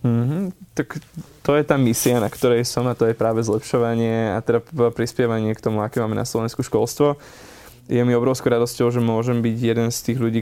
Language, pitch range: Slovak, 110-125 Hz